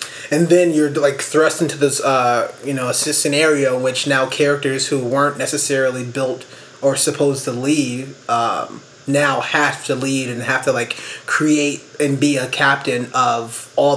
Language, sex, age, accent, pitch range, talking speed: English, male, 30-49, American, 130-150 Hz, 165 wpm